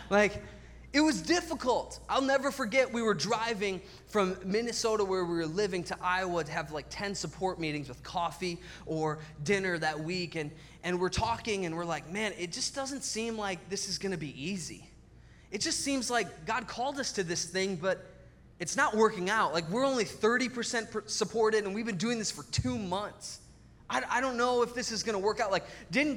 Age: 20-39